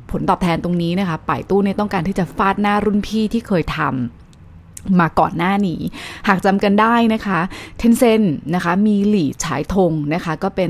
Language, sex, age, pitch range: Thai, female, 20-39, 165-215 Hz